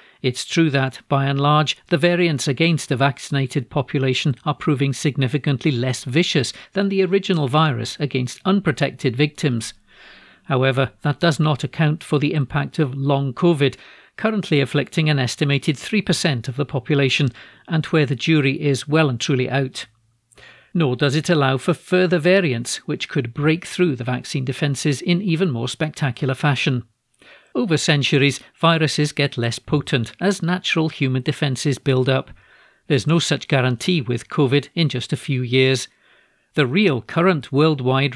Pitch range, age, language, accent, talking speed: 130-160 Hz, 50-69, English, British, 155 wpm